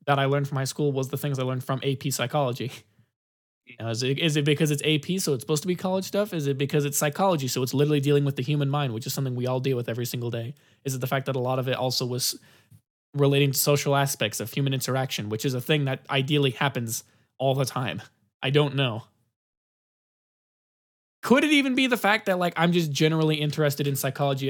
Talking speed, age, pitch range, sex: 235 wpm, 20-39, 120-145 Hz, male